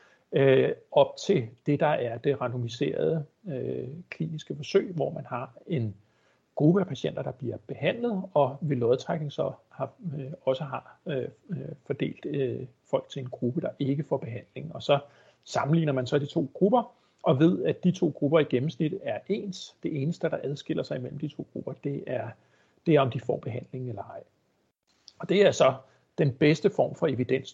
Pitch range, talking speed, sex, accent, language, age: 130-165 Hz, 170 wpm, male, native, Danish, 60-79